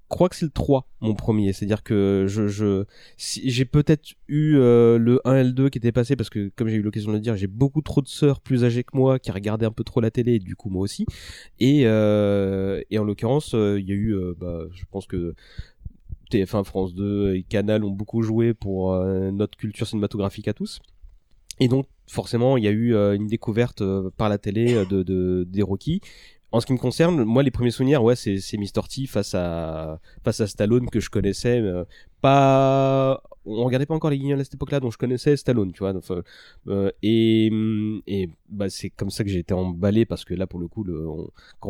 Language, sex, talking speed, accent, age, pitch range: French, male, 230 wpm, French, 30-49, 95-125 Hz